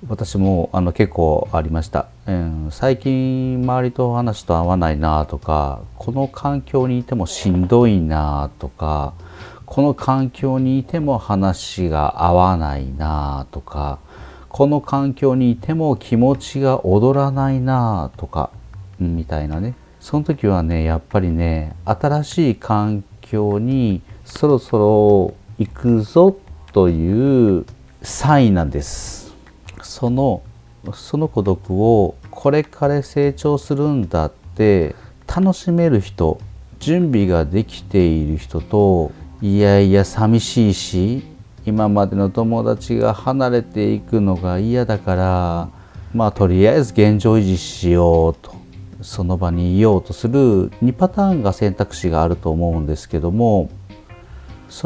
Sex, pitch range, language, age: male, 90-125 Hz, Japanese, 40-59